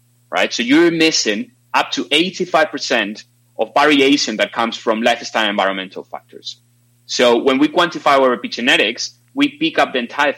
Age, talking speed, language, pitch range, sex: 30-49, 150 wpm, English, 110-130 Hz, male